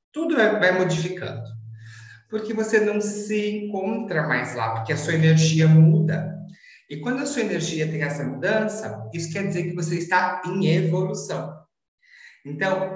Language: Portuguese